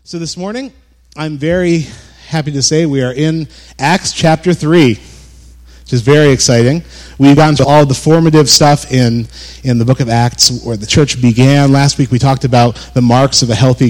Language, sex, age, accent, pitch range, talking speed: English, male, 30-49, American, 90-140 Hz, 195 wpm